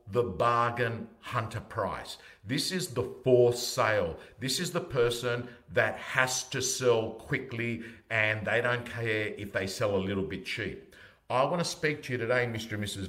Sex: male